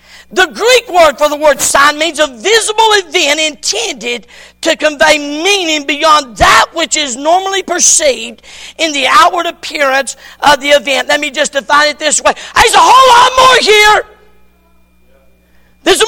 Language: English